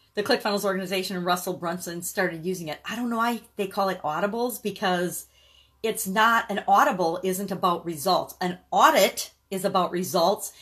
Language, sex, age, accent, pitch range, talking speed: English, female, 40-59, American, 185-235 Hz, 170 wpm